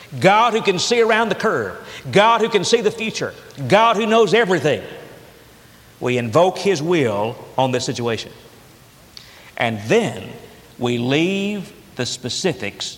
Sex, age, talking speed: male, 50-69, 140 wpm